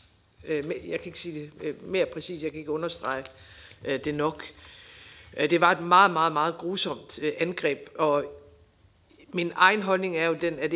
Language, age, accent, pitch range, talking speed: Danish, 50-69, native, 145-175 Hz, 160 wpm